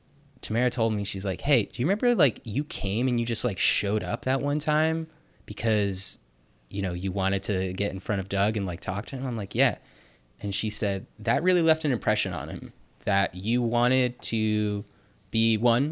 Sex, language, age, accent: male, English, 20-39, American